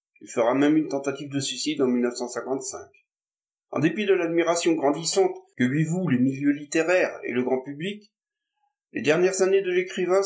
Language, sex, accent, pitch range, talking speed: French, male, French, 135-185 Hz, 170 wpm